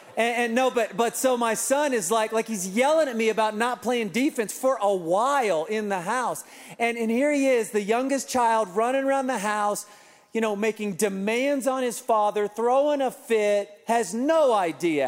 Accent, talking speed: American, 200 wpm